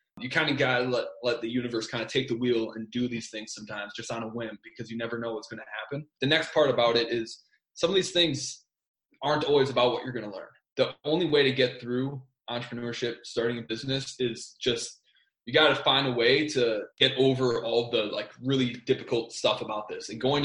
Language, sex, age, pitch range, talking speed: English, male, 20-39, 115-140 Hz, 235 wpm